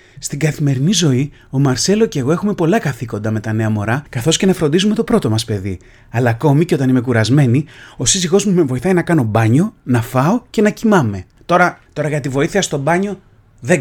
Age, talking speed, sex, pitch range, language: 30-49, 215 wpm, male, 130-205 Hz, Greek